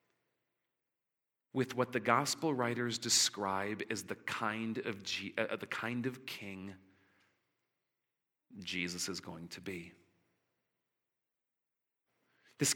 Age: 40-59